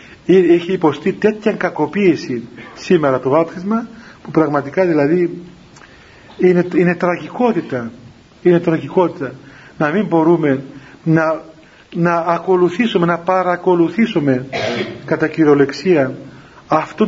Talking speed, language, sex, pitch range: 90 wpm, Greek, male, 145-185 Hz